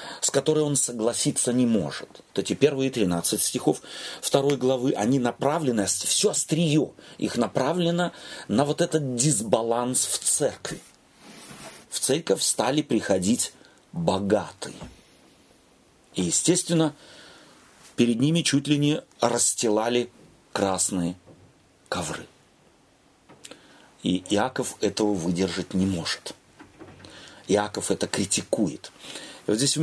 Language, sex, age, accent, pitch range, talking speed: Russian, male, 40-59, native, 115-150 Hz, 105 wpm